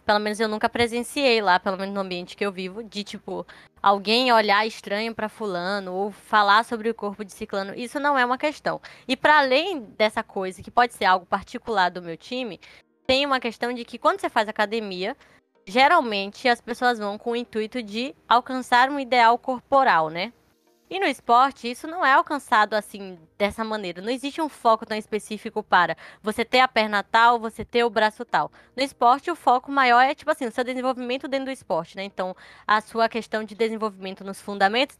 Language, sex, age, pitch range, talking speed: Portuguese, female, 20-39, 210-255 Hz, 200 wpm